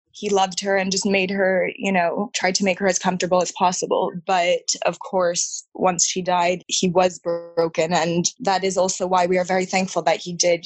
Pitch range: 175-190 Hz